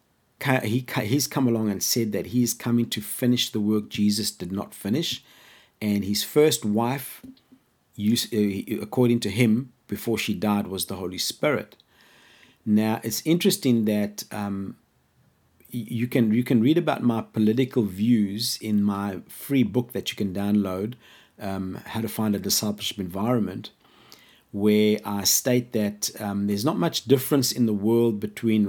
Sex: male